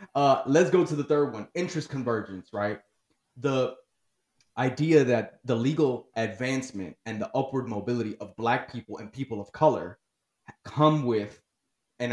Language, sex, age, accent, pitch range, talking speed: English, male, 20-39, American, 115-140 Hz, 150 wpm